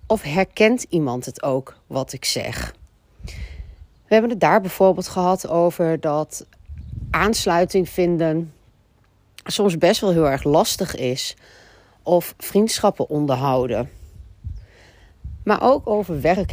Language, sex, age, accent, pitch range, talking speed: Dutch, female, 40-59, Dutch, 140-220 Hz, 115 wpm